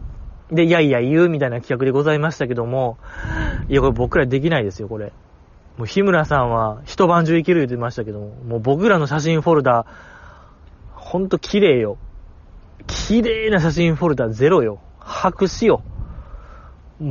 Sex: male